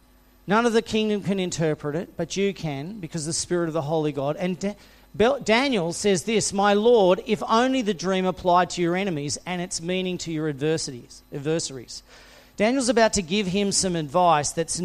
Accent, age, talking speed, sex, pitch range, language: Australian, 40-59, 185 wpm, male, 140-190 Hz, English